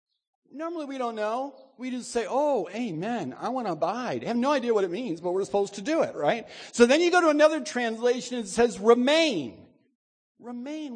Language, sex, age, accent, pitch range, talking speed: English, male, 50-69, American, 215-280 Hz, 215 wpm